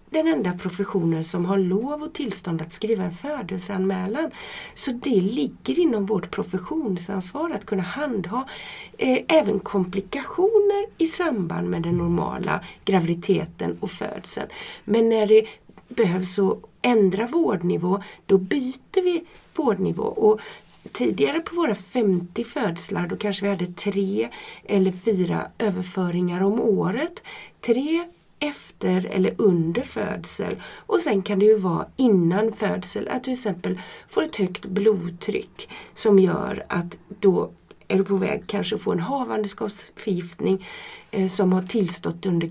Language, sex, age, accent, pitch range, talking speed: Swedish, female, 30-49, native, 190-255 Hz, 135 wpm